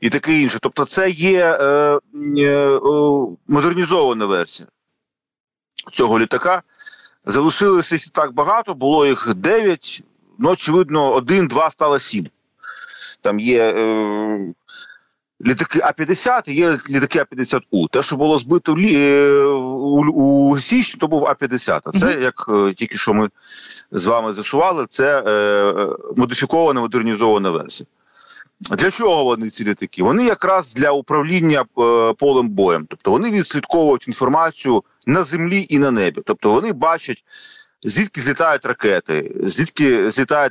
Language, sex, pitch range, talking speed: Ukrainian, male, 125-175 Hz, 135 wpm